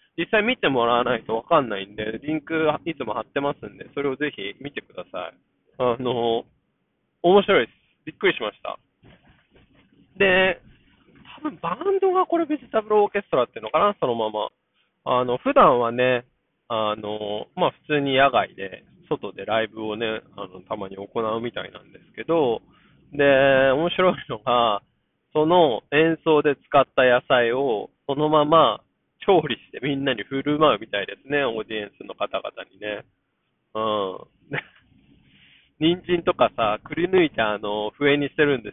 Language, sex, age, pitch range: Japanese, male, 20-39, 115-165 Hz